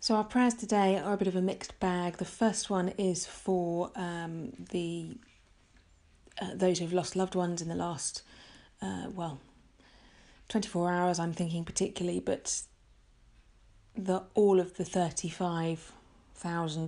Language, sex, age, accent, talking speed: English, female, 30-49, British, 145 wpm